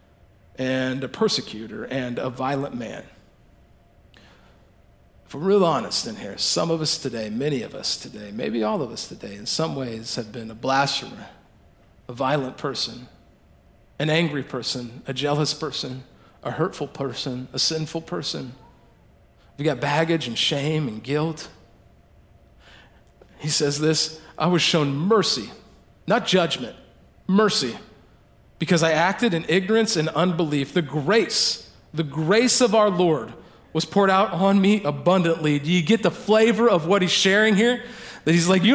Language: English